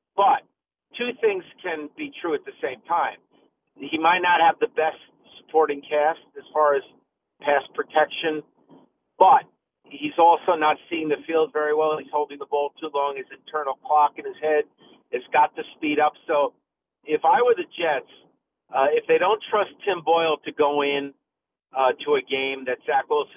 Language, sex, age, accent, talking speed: English, male, 50-69, American, 185 wpm